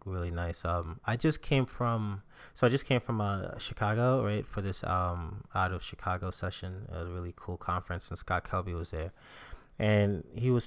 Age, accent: 20-39, American